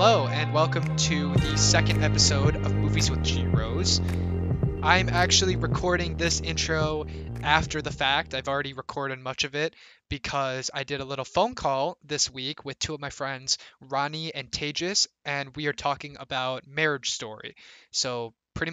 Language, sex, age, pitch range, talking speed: English, male, 20-39, 120-145 Hz, 165 wpm